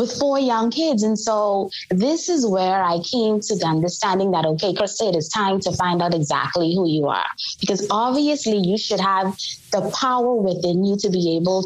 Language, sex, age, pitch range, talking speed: English, female, 20-39, 175-225 Hz, 200 wpm